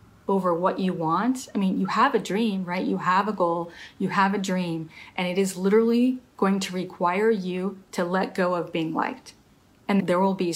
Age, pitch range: 30-49, 175-210 Hz